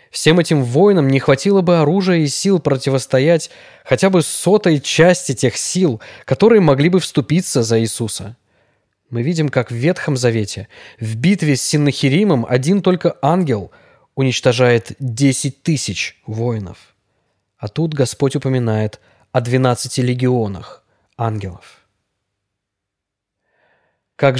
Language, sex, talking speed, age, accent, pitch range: Russian, male, 120 wpm, 20-39, native, 110-150 Hz